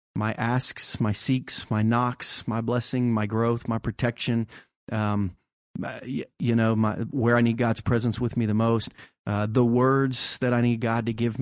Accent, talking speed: American, 180 wpm